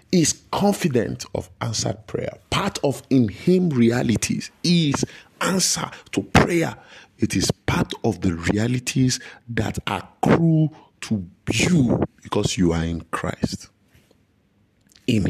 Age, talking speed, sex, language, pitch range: 50-69, 120 wpm, male, English, 100-135 Hz